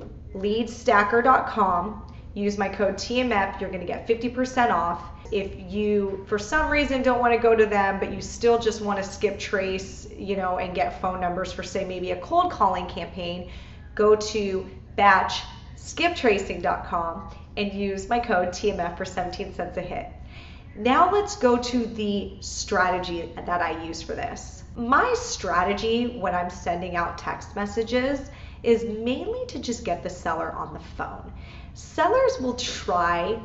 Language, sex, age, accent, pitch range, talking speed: English, female, 30-49, American, 180-235 Hz, 160 wpm